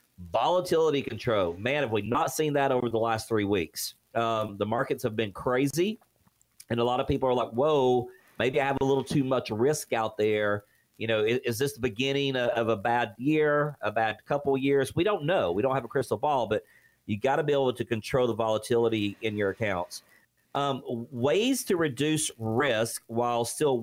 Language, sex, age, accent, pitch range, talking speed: English, male, 40-59, American, 110-135 Hz, 205 wpm